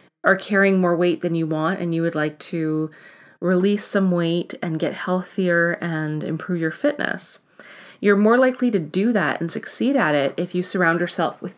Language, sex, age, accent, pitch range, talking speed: English, female, 30-49, American, 165-210 Hz, 190 wpm